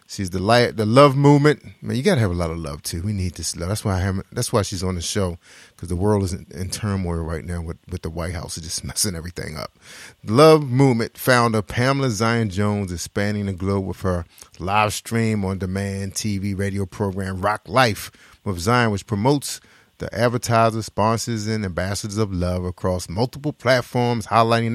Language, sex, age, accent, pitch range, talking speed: English, male, 30-49, American, 95-120 Hz, 200 wpm